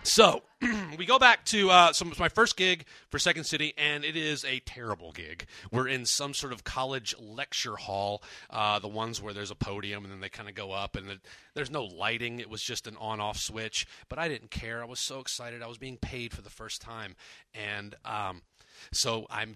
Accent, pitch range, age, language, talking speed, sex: American, 105-145 Hz, 30-49, English, 215 wpm, male